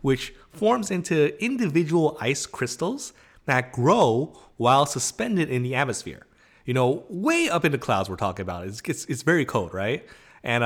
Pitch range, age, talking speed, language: 115-180 Hz, 30-49, 170 wpm, English